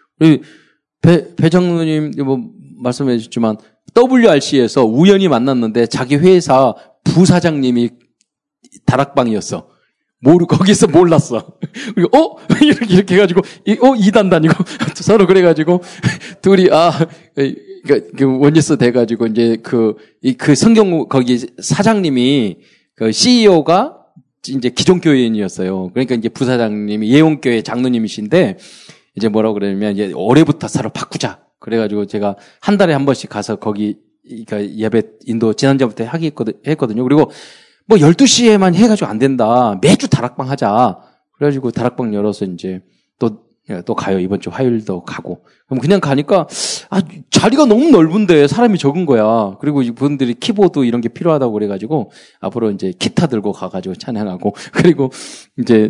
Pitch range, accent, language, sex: 115-175 Hz, native, Korean, male